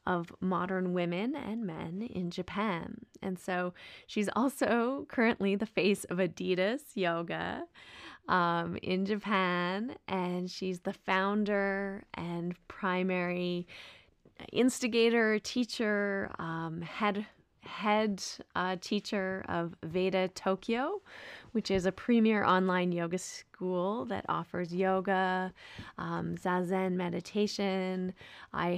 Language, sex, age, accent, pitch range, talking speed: English, female, 20-39, American, 175-205 Hz, 105 wpm